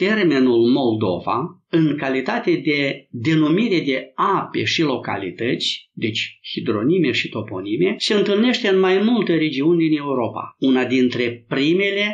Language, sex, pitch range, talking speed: Romanian, male, 125-195 Hz, 125 wpm